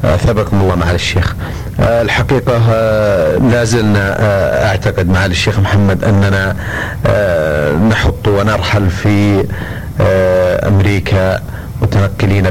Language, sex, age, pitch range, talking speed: Arabic, male, 40-59, 95-115 Hz, 75 wpm